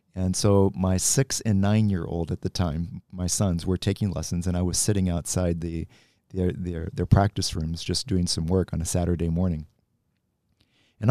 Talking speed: 195 wpm